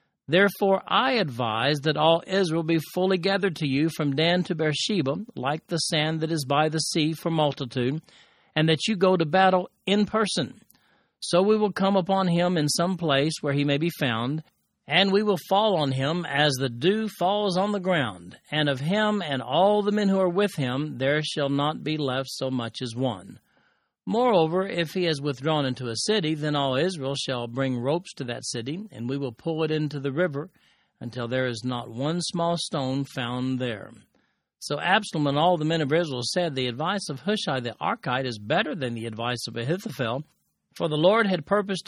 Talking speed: 200 wpm